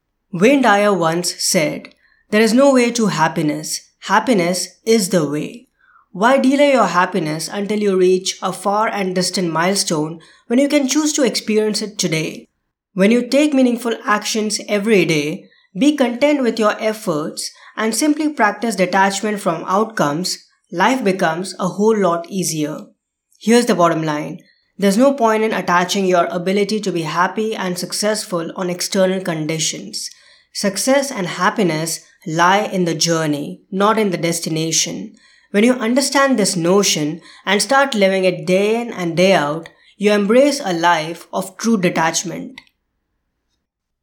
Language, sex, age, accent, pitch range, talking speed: English, female, 20-39, Indian, 175-225 Hz, 150 wpm